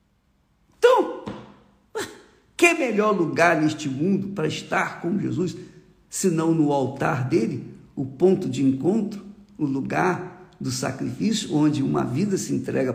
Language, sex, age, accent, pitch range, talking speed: Portuguese, male, 50-69, Brazilian, 150-225 Hz, 130 wpm